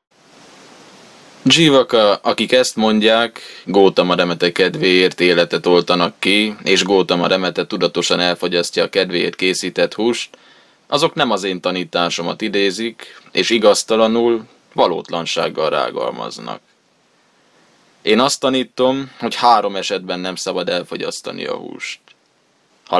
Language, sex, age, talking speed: Hungarian, male, 20-39, 105 wpm